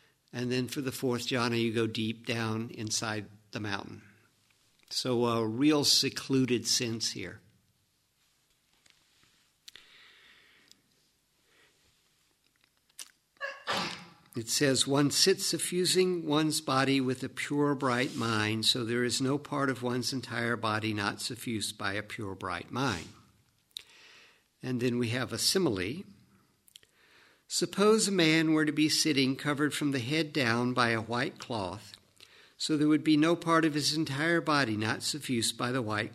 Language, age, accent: English, 50-69, American